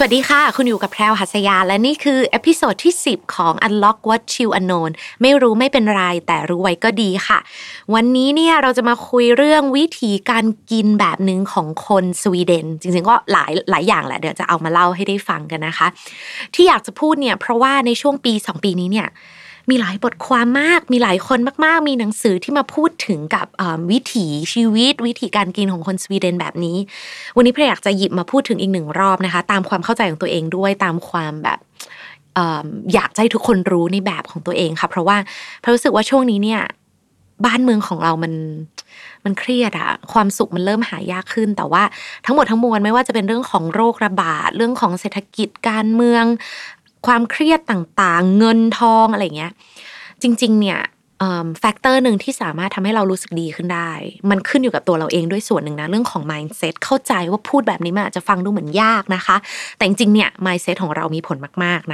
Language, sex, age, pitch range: Thai, female, 20-39, 180-245 Hz